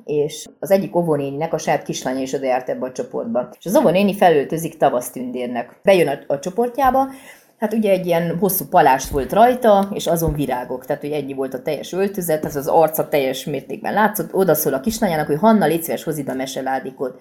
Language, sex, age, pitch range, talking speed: Hungarian, female, 30-49, 135-165 Hz, 195 wpm